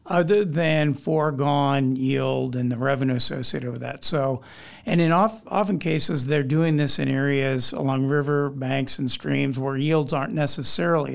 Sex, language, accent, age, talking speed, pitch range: male, English, American, 50-69, 160 wpm, 130-155 Hz